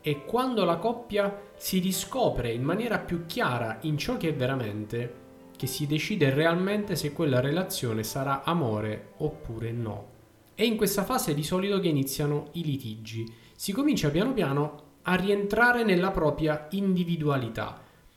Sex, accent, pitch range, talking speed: male, native, 120-175 Hz, 150 wpm